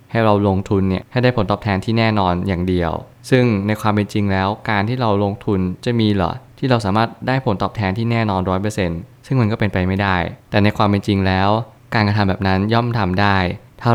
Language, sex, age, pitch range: Thai, male, 20-39, 95-115 Hz